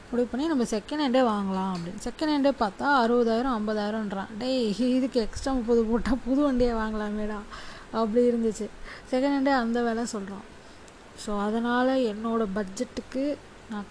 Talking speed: 140 wpm